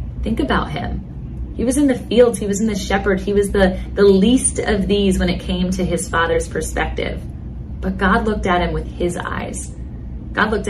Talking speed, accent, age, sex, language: 210 wpm, American, 30-49, female, English